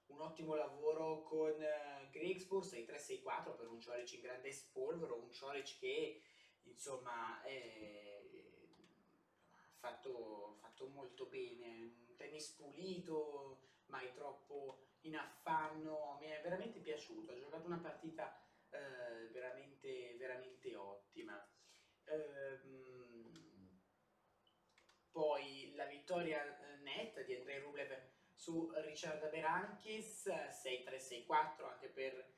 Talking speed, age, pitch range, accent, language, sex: 100 wpm, 20-39, 135-175 Hz, native, Italian, male